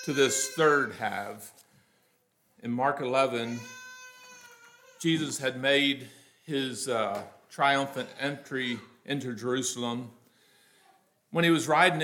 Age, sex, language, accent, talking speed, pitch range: 50-69, male, English, American, 100 wpm, 125-170 Hz